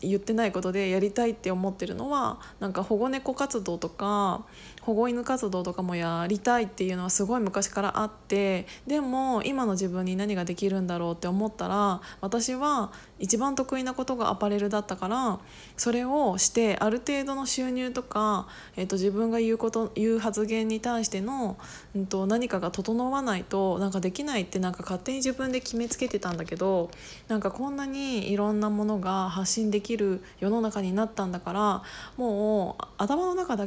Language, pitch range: Japanese, 195-245 Hz